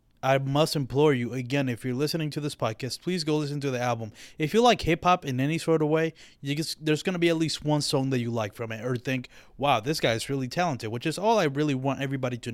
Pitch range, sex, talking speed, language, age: 125-150 Hz, male, 270 wpm, English, 20-39